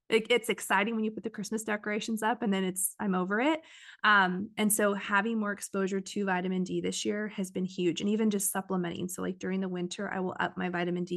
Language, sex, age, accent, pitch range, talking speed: English, female, 20-39, American, 185-215 Hz, 235 wpm